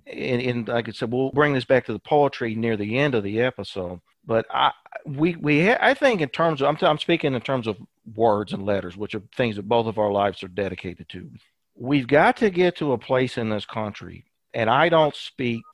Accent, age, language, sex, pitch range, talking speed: American, 50-69, English, male, 105-135 Hz, 235 wpm